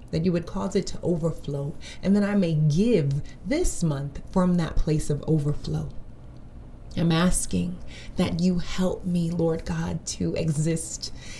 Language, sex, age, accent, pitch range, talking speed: English, female, 30-49, American, 155-190 Hz, 155 wpm